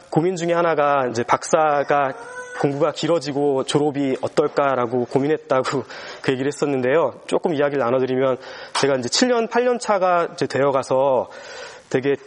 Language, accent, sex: Korean, native, male